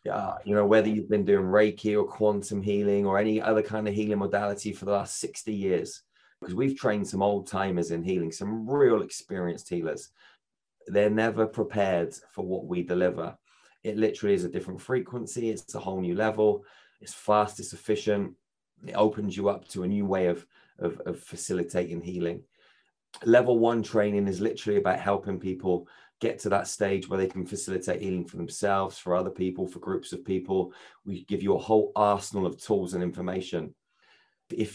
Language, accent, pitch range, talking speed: English, British, 90-105 Hz, 185 wpm